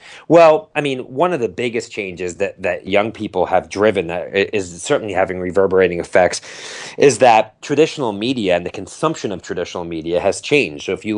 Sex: male